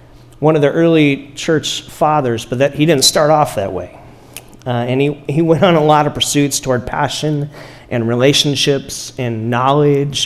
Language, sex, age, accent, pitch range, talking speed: English, male, 40-59, American, 125-155 Hz, 175 wpm